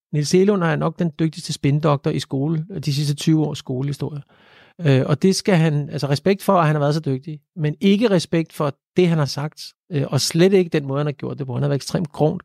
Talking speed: 240 wpm